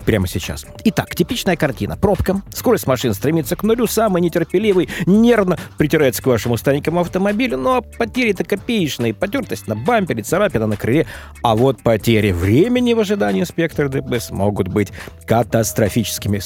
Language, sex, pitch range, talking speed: Russian, male, 110-175 Hz, 140 wpm